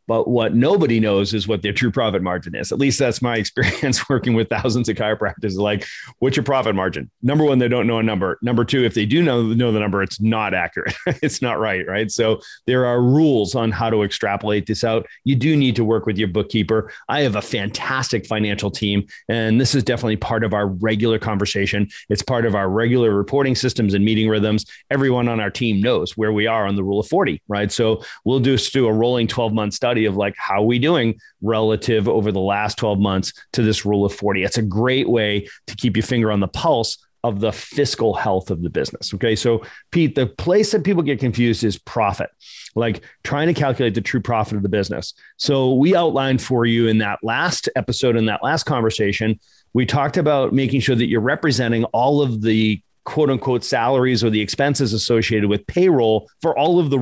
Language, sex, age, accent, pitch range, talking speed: English, male, 40-59, American, 105-125 Hz, 215 wpm